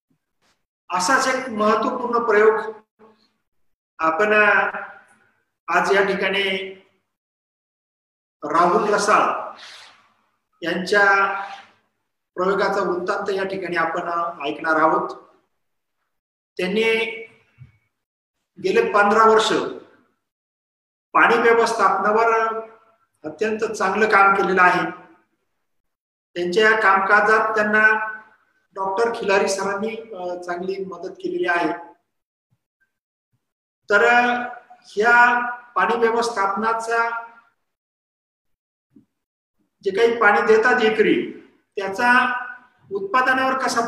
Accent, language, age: Indian, English, 50-69